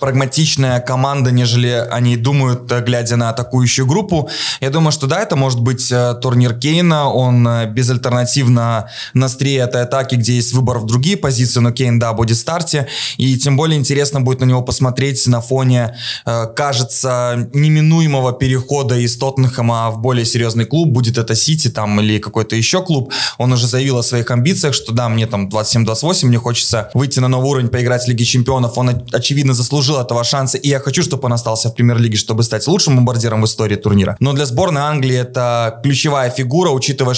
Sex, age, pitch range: male, 20-39, 120-135 Hz